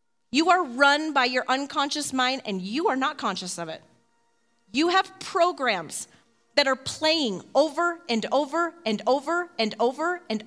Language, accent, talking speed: English, American, 160 wpm